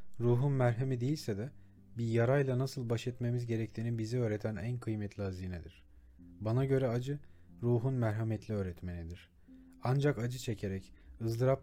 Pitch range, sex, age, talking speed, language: 100-125 Hz, male, 40-59, 130 wpm, Turkish